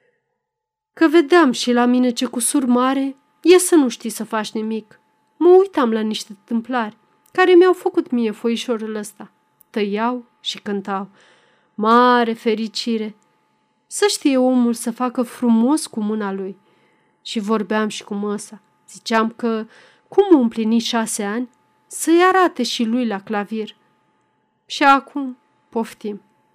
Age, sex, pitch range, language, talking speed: 30-49, female, 215-285 Hz, Romanian, 135 wpm